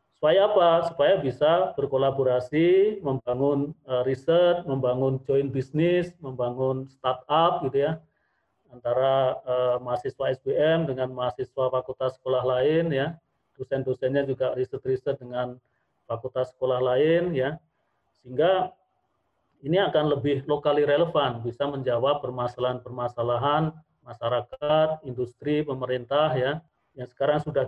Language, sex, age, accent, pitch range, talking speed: Indonesian, male, 40-59, native, 130-155 Hz, 100 wpm